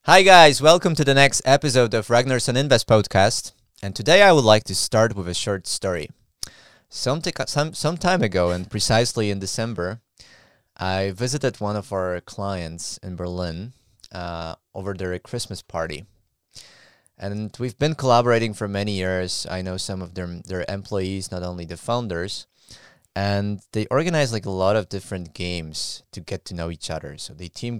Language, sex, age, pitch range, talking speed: English, male, 20-39, 90-110 Hz, 175 wpm